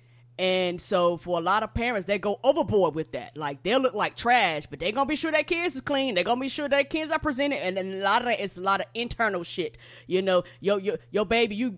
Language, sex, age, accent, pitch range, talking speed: English, female, 20-39, American, 180-225 Hz, 280 wpm